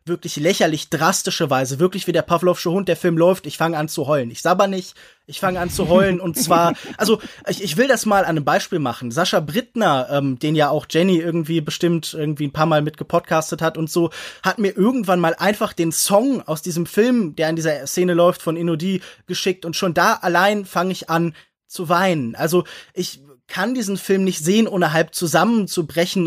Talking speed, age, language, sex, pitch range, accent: 210 wpm, 20-39, German, male, 155-185 Hz, German